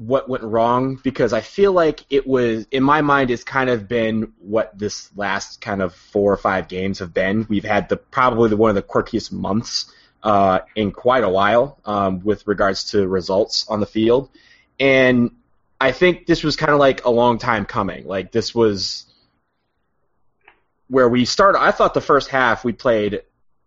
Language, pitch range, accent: English, 100-120 Hz, American